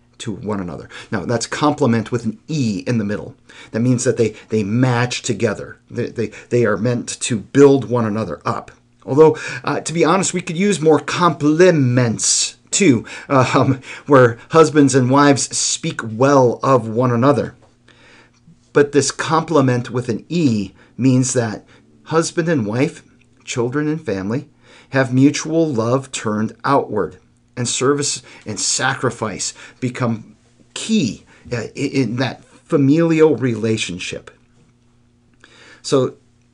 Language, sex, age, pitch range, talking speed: English, male, 40-59, 110-145 Hz, 130 wpm